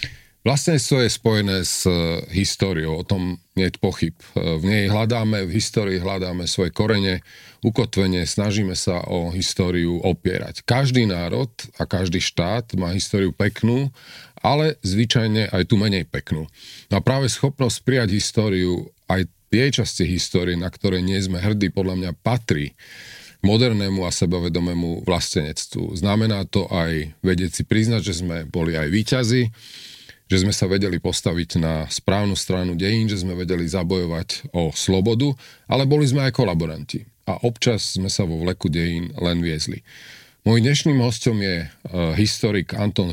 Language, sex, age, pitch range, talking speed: Slovak, male, 40-59, 90-115 Hz, 150 wpm